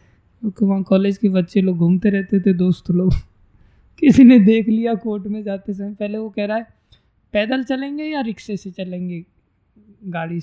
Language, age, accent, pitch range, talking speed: Hindi, 20-39, native, 155-215 Hz, 185 wpm